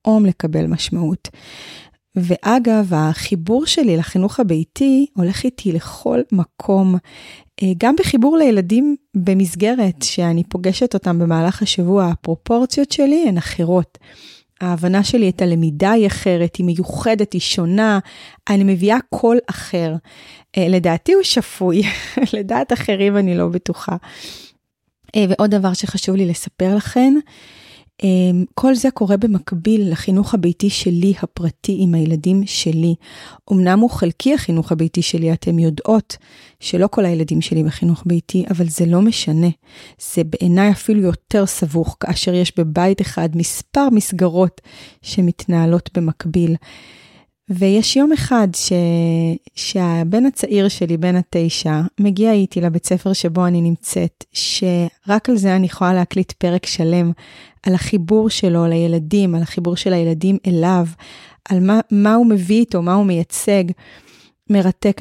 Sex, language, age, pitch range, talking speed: female, Hebrew, 30-49, 170-205 Hz, 125 wpm